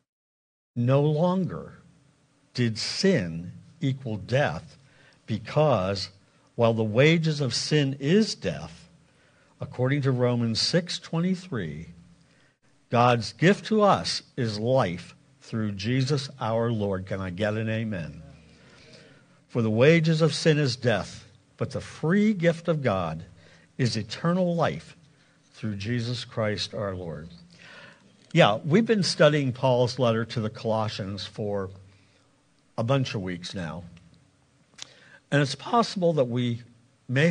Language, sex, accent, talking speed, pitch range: English, male, American, 120 wpm, 110-150 Hz